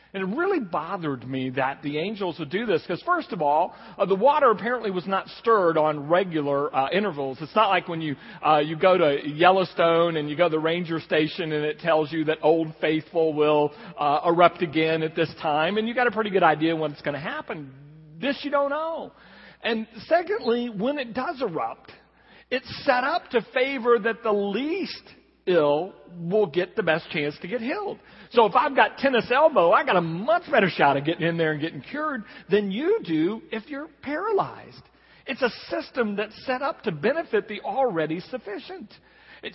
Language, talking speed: English, 200 wpm